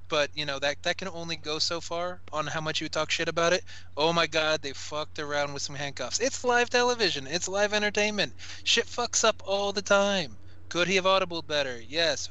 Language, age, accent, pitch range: English, 20-39, American, 130-170 Hz